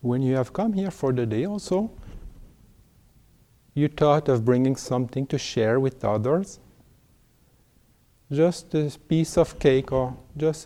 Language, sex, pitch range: English, male, 120-155 Hz